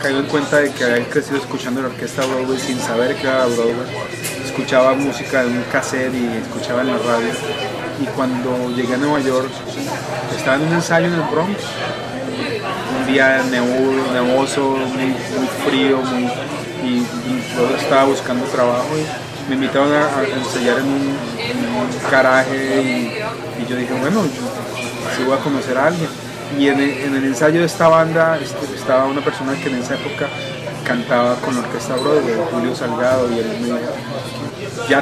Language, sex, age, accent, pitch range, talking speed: Spanish, male, 30-49, Colombian, 120-135 Hz, 165 wpm